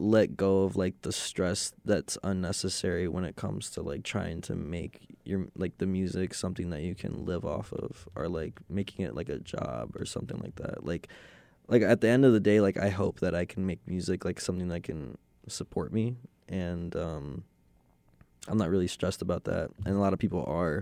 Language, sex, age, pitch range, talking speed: English, male, 20-39, 90-100 Hz, 215 wpm